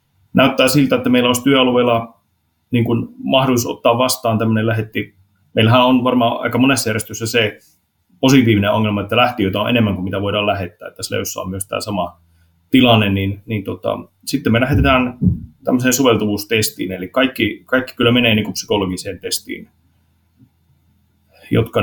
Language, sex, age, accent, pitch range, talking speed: Finnish, male, 30-49, native, 100-125 Hz, 155 wpm